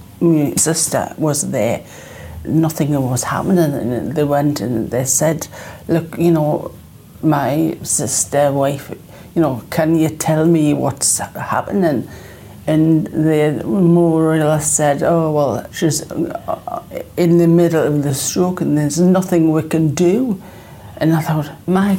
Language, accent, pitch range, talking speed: English, British, 140-160 Hz, 140 wpm